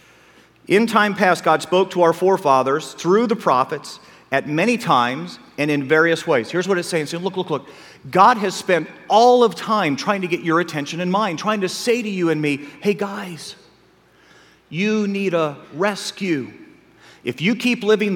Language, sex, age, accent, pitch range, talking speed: English, male, 40-59, American, 155-210 Hz, 180 wpm